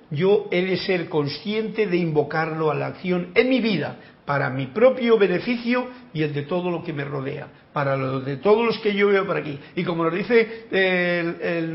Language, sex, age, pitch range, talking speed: Spanish, male, 50-69, 155-205 Hz, 210 wpm